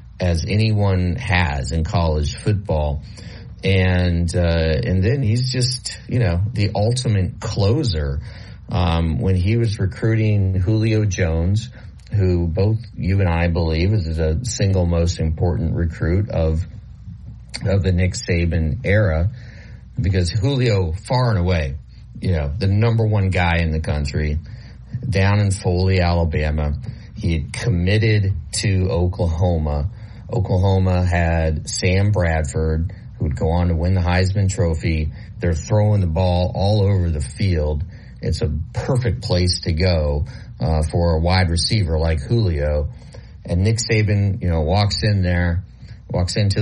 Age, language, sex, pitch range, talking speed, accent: 40-59, English, male, 85-105 Hz, 140 wpm, American